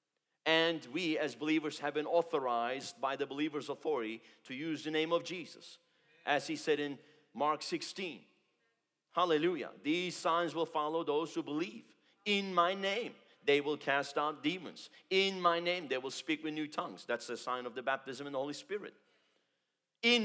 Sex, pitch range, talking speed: male, 150-180 Hz, 175 wpm